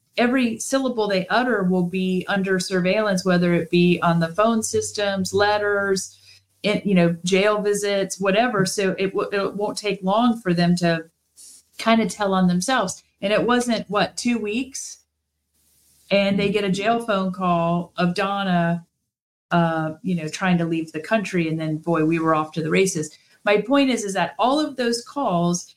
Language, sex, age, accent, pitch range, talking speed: English, female, 40-59, American, 180-235 Hz, 180 wpm